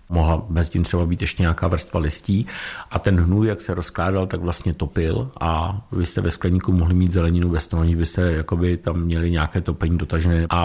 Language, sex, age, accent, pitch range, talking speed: Czech, male, 50-69, native, 85-95 Hz, 205 wpm